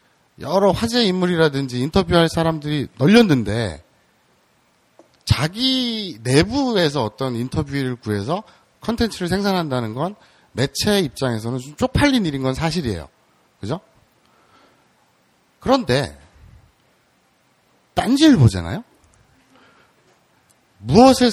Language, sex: Korean, male